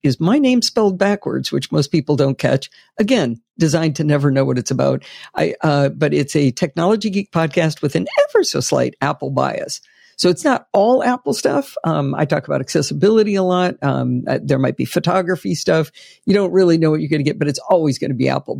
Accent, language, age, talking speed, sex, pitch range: American, English, 60-79, 225 wpm, female, 135-175 Hz